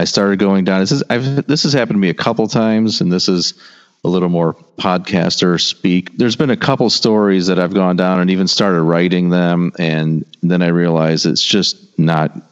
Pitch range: 75-90 Hz